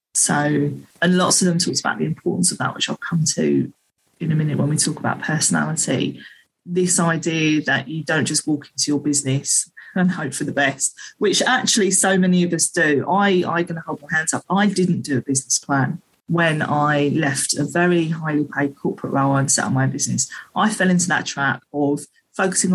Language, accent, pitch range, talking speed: English, British, 150-180 Hz, 210 wpm